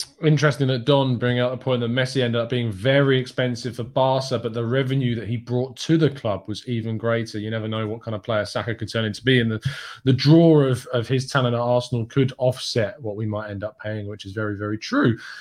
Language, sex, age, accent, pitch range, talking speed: English, male, 20-39, British, 115-140 Hz, 245 wpm